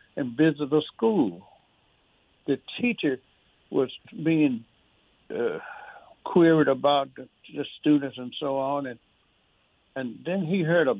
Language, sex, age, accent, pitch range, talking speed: English, male, 60-79, American, 135-175 Hz, 125 wpm